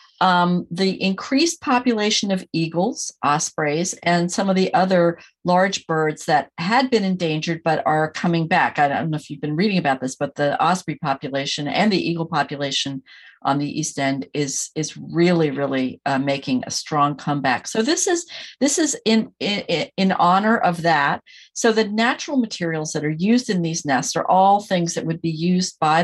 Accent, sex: American, female